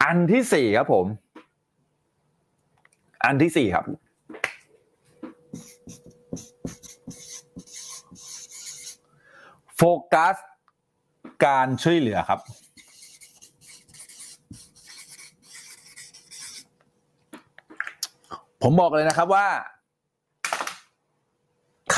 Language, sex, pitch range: Thai, male, 135-195 Hz